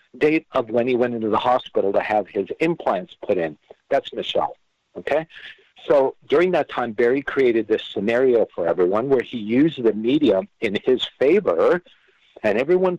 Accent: American